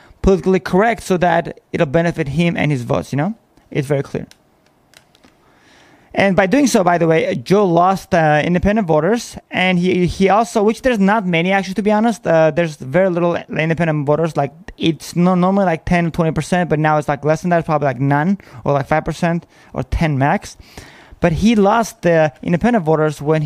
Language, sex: English, male